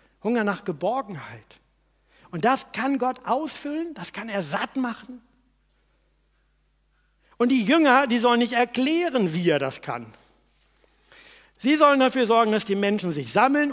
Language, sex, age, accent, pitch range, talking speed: German, male, 60-79, German, 165-250 Hz, 145 wpm